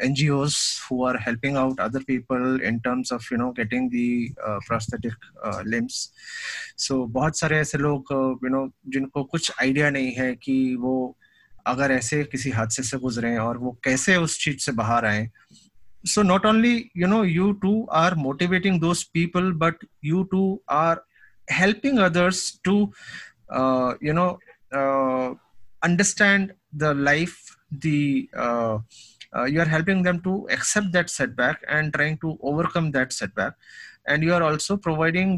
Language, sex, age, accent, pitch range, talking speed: English, male, 20-39, Indian, 125-165 Hz, 135 wpm